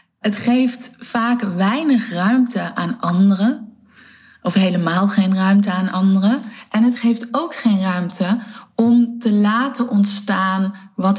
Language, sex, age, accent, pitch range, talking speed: Dutch, female, 20-39, Dutch, 190-220 Hz, 130 wpm